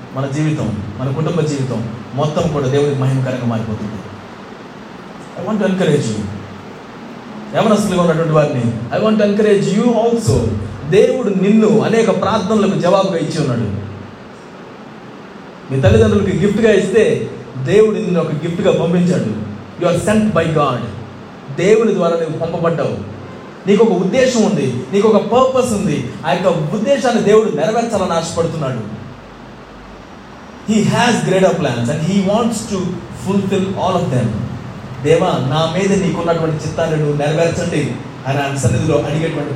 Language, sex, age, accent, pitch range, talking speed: Telugu, male, 20-39, native, 140-200 Hz, 130 wpm